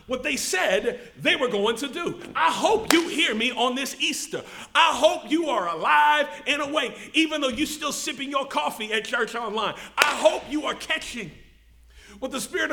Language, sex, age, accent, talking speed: English, male, 40-59, American, 190 wpm